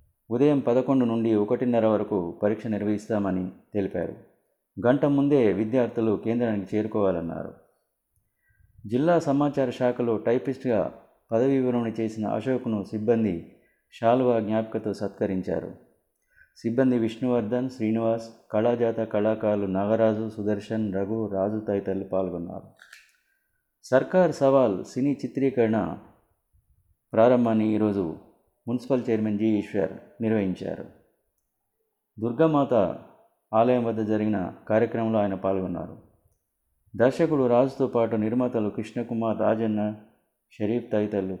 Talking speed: 90 wpm